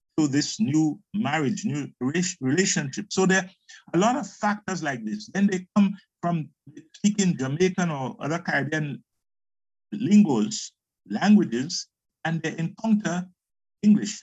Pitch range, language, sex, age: 145-205 Hz, English, male, 50-69